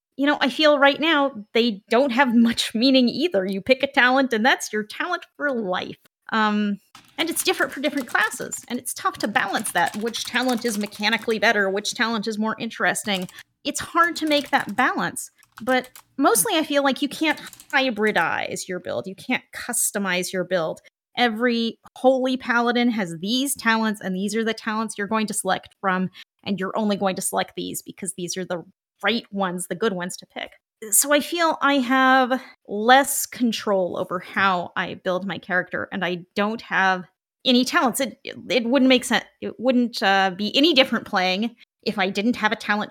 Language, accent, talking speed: English, American, 190 wpm